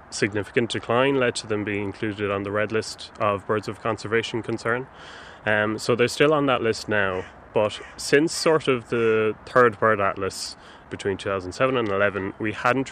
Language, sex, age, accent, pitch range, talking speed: English, male, 20-39, Irish, 105-125 Hz, 175 wpm